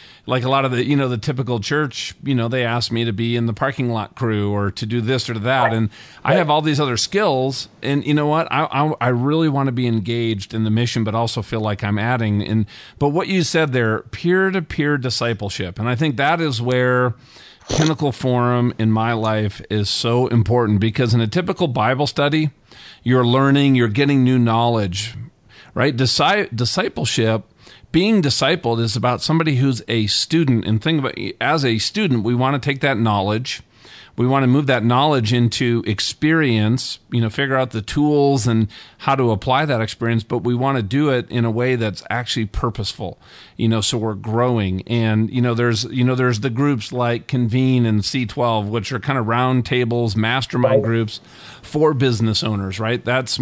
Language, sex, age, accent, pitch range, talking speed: English, male, 40-59, American, 115-135 Hz, 200 wpm